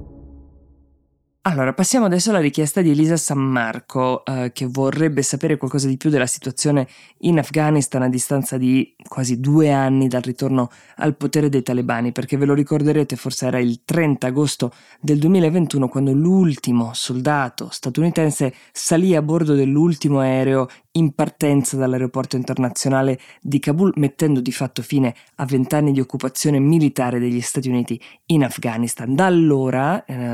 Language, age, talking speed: Italian, 20-39, 150 wpm